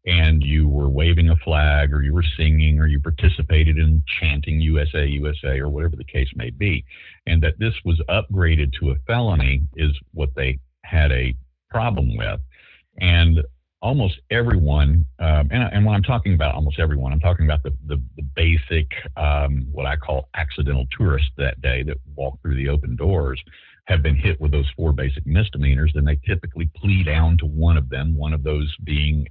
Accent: American